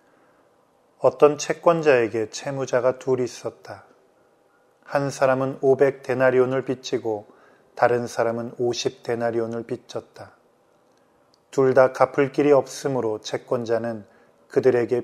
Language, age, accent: Korean, 20-39, native